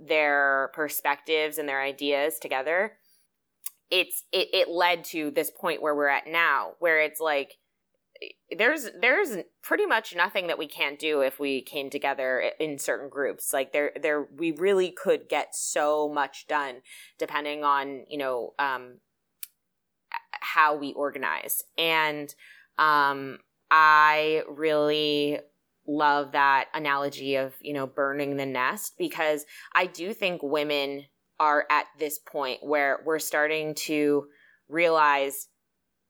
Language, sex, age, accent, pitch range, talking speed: English, female, 20-39, American, 140-155 Hz, 135 wpm